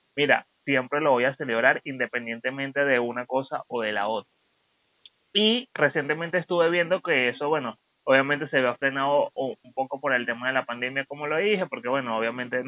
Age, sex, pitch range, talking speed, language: 20-39, male, 125-165 Hz, 185 wpm, Spanish